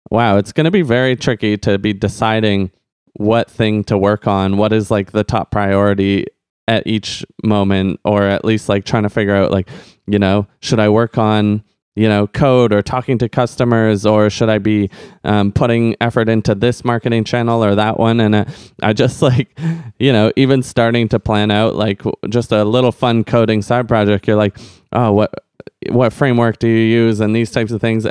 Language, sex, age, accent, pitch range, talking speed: English, male, 20-39, American, 105-120 Hz, 200 wpm